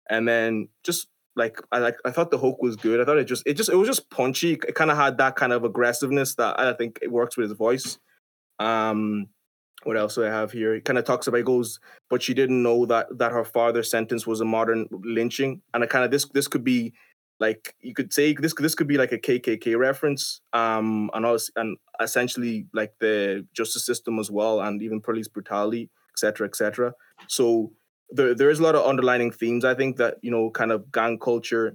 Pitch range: 110-125 Hz